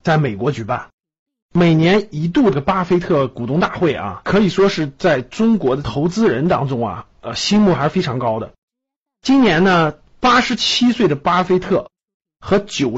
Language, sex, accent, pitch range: Chinese, male, native, 145-210 Hz